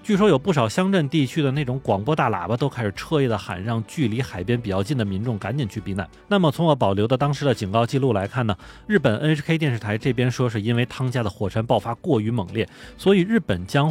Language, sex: Chinese, male